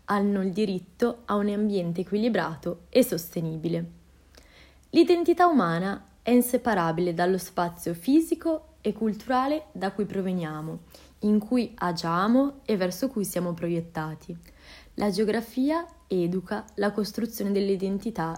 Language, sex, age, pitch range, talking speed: Italian, female, 20-39, 170-235 Hz, 115 wpm